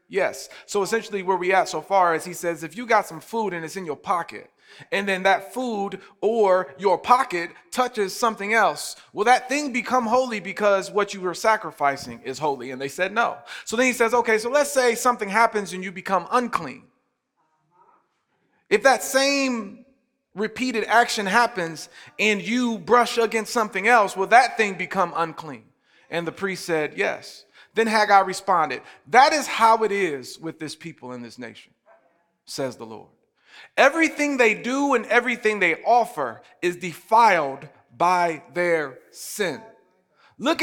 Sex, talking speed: male, 165 wpm